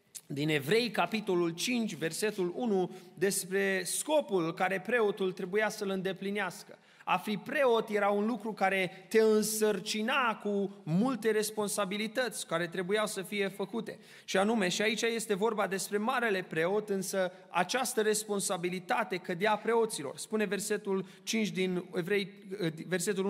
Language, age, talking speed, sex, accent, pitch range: Romanian, 30-49, 120 wpm, male, native, 185-215 Hz